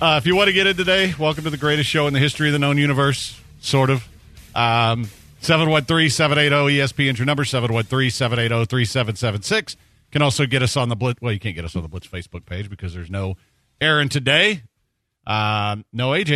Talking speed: 190 wpm